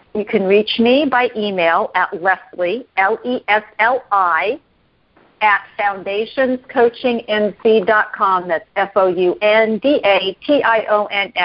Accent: American